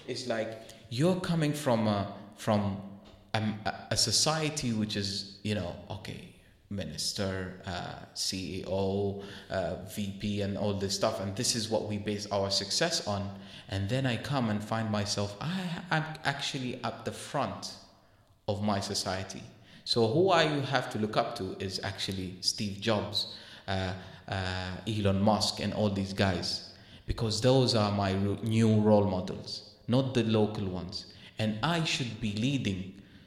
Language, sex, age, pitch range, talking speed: English, male, 30-49, 100-120 Hz, 150 wpm